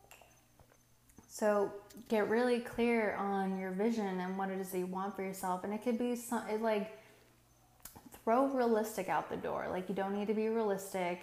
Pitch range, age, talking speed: 185-205 Hz, 20-39, 175 wpm